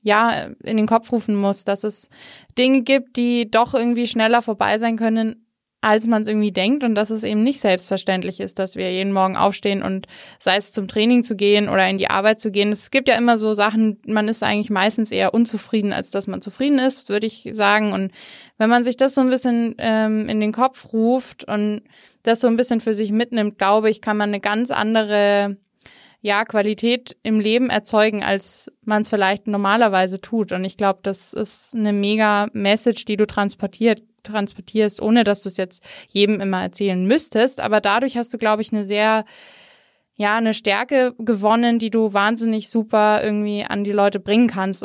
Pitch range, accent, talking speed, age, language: 200-230 Hz, German, 200 wpm, 20-39, German